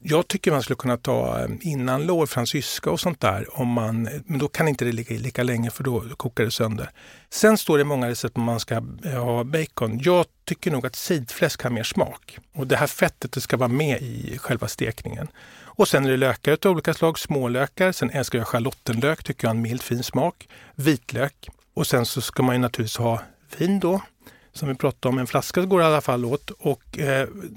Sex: male